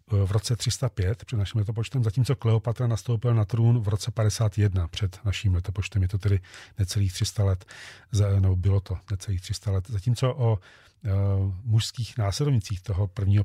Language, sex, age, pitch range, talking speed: Czech, male, 40-59, 100-115 Hz, 155 wpm